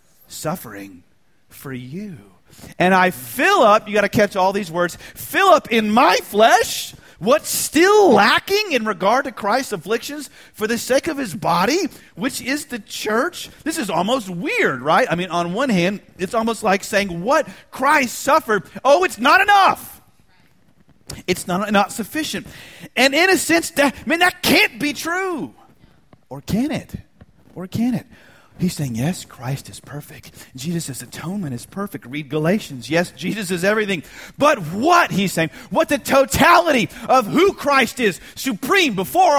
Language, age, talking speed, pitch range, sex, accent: English, 40-59, 165 wpm, 170-270 Hz, male, American